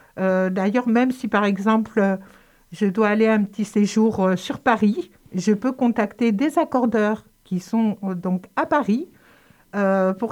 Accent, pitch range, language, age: French, 195-235 Hz, French, 60-79